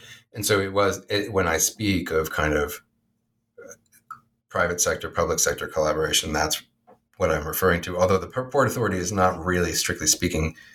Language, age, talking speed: English, 40-59, 165 wpm